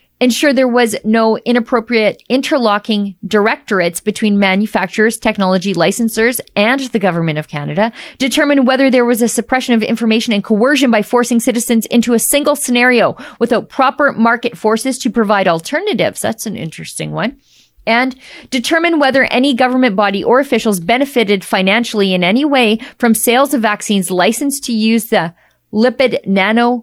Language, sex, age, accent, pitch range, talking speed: English, female, 40-59, American, 180-240 Hz, 150 wpm